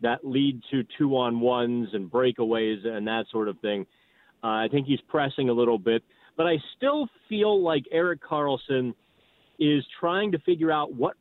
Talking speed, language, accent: 170 wpm, English, American